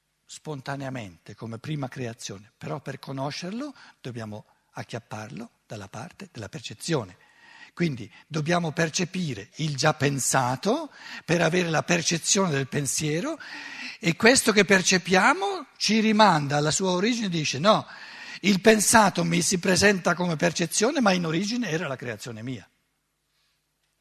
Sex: male